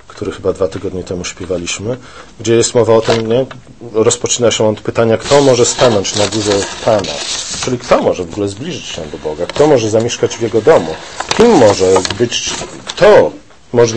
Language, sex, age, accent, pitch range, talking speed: Polish, male, 40-59, native, 105-130 Hz, 180 wpm